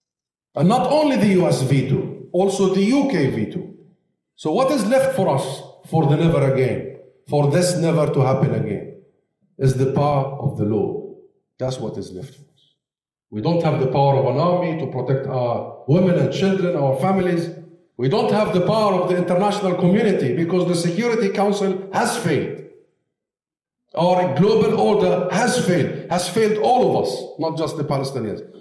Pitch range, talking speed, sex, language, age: 135-195 Hz, 175 wpm, male, English, 50-69